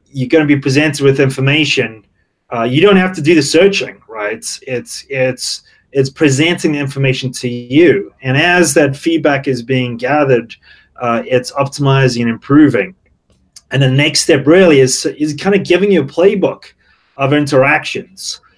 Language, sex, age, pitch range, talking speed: English, male, 30-49, 130-160 Hz, 165 wpm